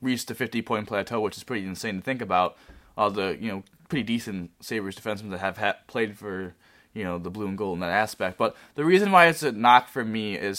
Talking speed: 250 wpm